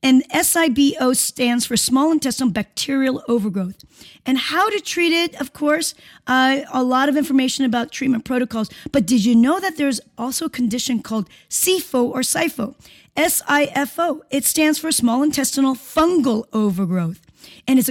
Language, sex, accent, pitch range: English, female, American, 235-295 Hz